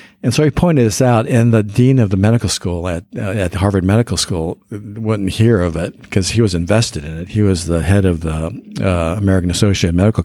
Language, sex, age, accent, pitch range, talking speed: English, male, 60-79, American, 90-110 Hz, 230 wpm